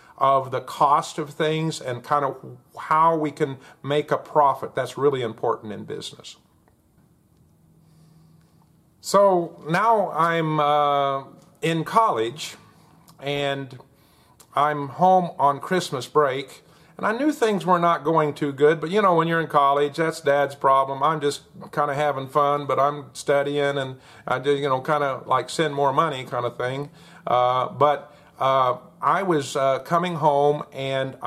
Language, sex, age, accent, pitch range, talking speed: English, male, 50-69, American, 130-155 Hz, 155 wpm